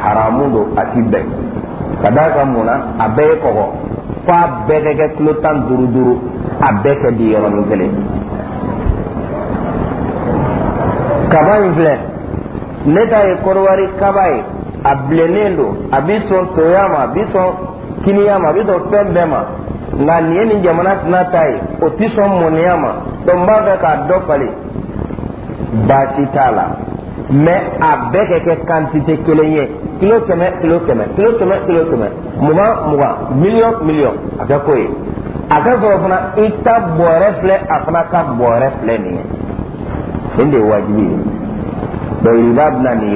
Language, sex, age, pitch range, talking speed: English, male, 50-69, 130-190 Hz, 90 wpm